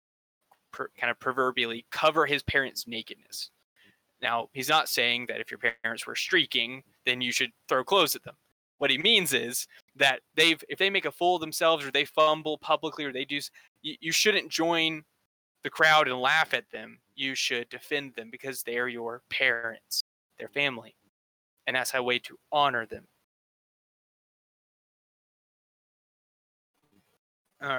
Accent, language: American, English